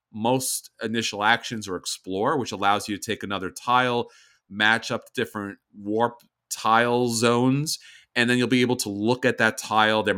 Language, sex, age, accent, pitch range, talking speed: English, male, 40-59, American, 105-130 Hz, 170 wpm